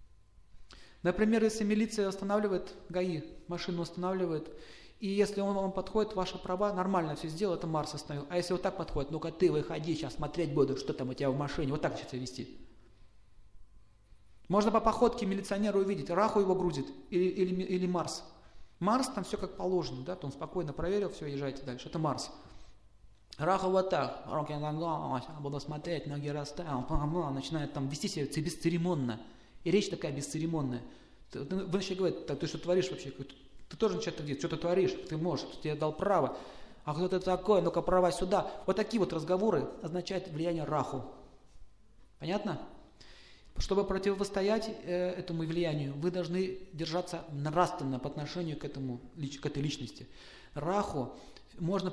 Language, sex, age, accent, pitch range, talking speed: Russian, male, 30-49, native, 140-185 Hz, 160 wpm